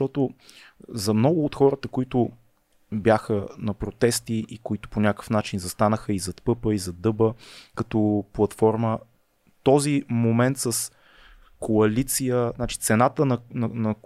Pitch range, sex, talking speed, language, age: 110-140 Hz, male, 135 wpm, Bulgarian, 20-39